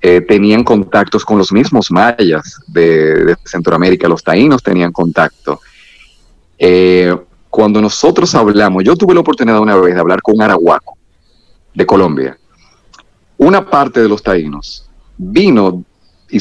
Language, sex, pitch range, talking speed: Spanish, male, 90-135 Hz, 140 wpm